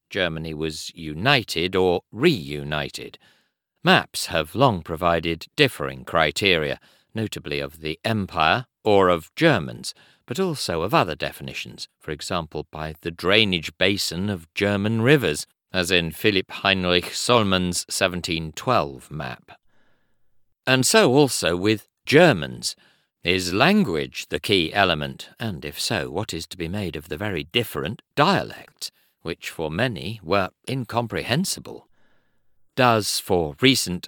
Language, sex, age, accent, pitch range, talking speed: English, male, 50-69, British, 85-115 Hz, 125 wpm